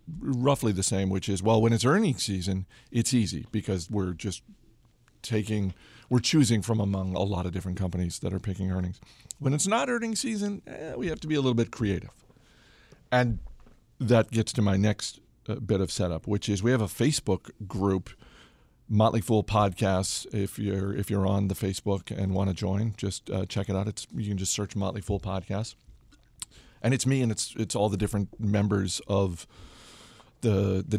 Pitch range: 95-115 Hz